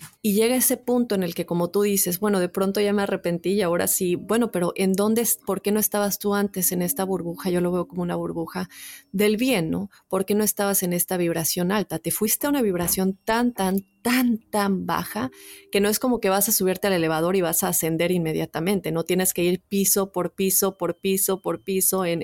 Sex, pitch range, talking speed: female, 175-205 Hz, 230 wpm